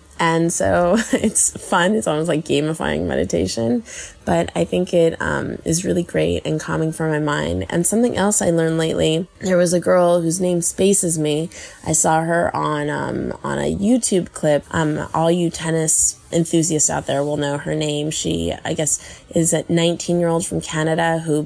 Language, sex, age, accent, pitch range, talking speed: English, female, 20-39, American, 155-175 Hz, 180 wpm